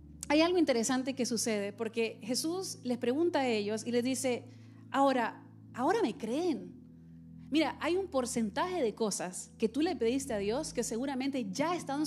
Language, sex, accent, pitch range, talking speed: Spanish, female, Venezuelan, 230-290 Hz, 170 wpm